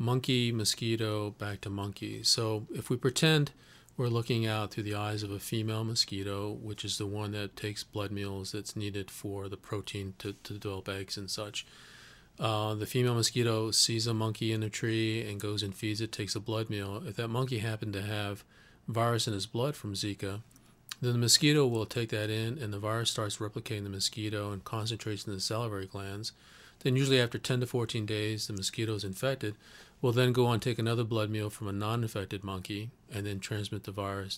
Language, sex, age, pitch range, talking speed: English, male, 40-59, 105-120 Hz, 205 wpm